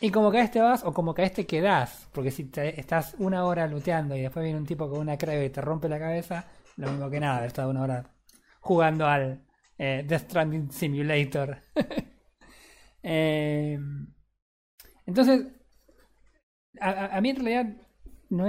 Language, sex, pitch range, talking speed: Spanish, male, 135-165 Hz, 175 wpm